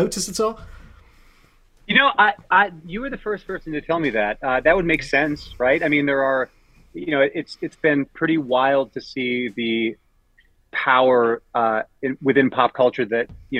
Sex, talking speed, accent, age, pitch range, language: male, 190 wpm, American, 30-49, 115-155 Hz, English